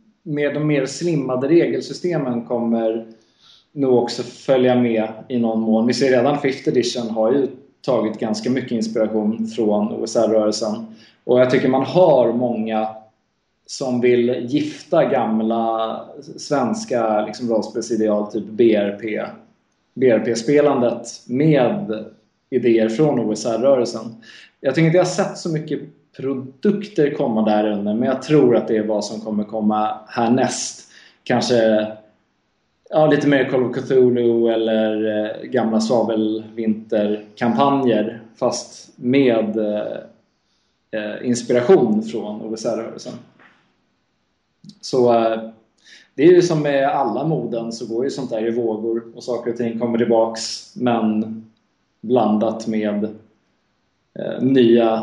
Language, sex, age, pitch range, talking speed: English, male, 20-39, 110-130 Hz, 120 wpm